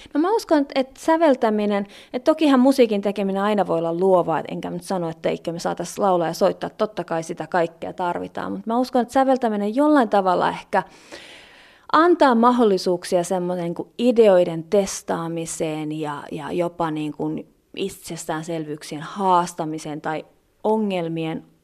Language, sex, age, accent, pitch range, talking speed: Finnish, female, 30-49, native, 165-220 Hz, 145 wpm